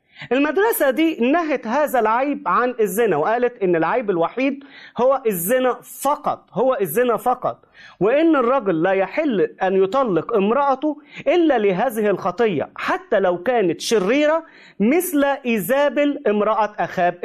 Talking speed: 120 wpm